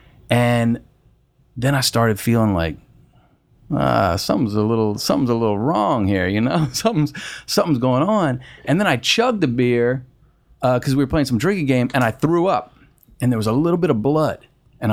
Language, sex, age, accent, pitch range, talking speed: English, male, 30-49, American, 100-125 Hz, 195 wpm